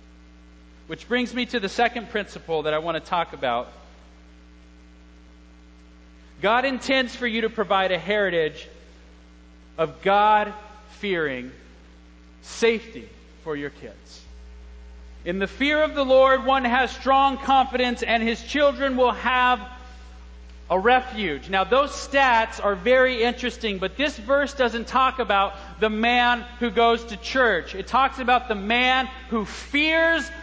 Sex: male